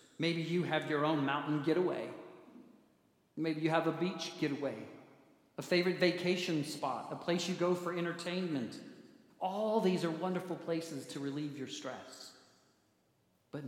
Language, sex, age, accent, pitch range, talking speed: English, male, 50-69, American, 145-175 Hz, 145 wpm